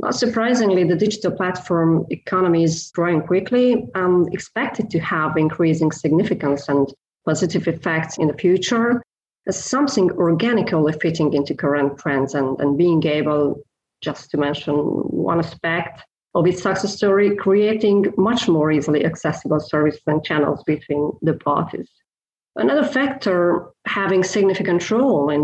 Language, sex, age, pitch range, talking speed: English, female, 30-49, 155-195 Hz, 135 wpm